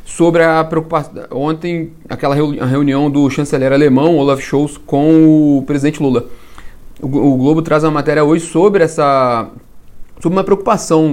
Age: 30-49